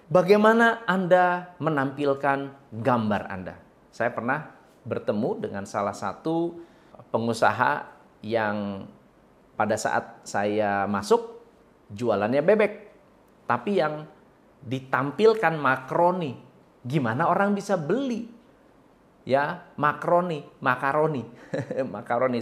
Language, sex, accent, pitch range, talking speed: Indonesian, male, native, 120-185 Hz, 85 wpm